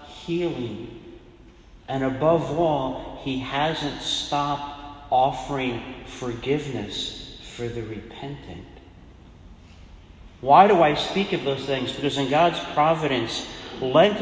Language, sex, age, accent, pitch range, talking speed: English, male, 40-59, American, 105-135 Hz, 100 wpm